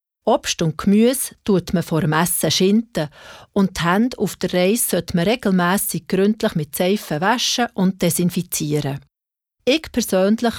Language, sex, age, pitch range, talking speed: German, female, 40-59, 170-215 Hz, 140 wpm